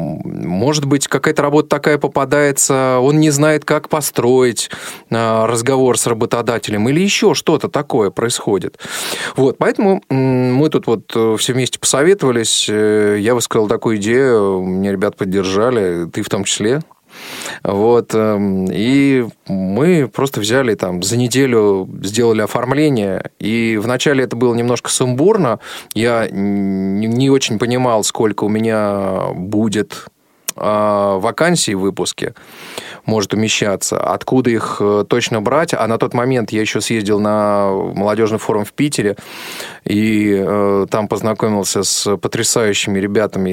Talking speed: 125 wpm